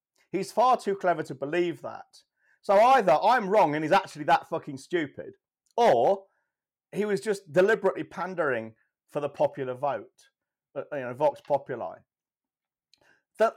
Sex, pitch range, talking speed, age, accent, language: male, 140-200 Hz, 140 wpm, 40-59, British, English